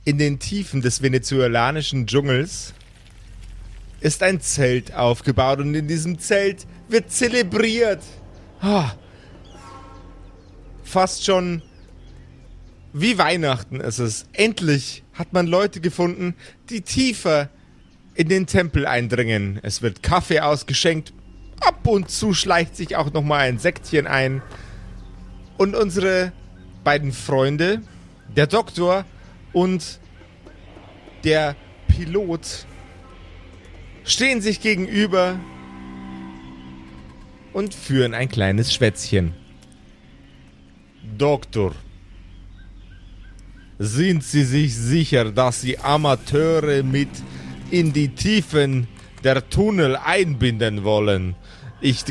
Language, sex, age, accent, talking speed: German, male, 30-49, German, 95 wpm